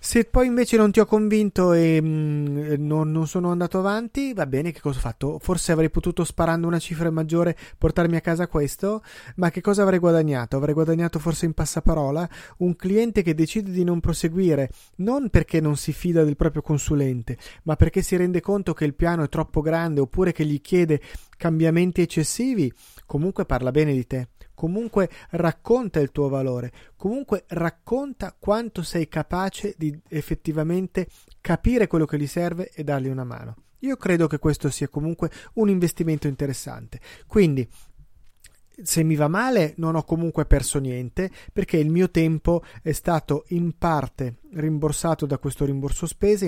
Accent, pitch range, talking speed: native, 145-180 Hz, 170 wpm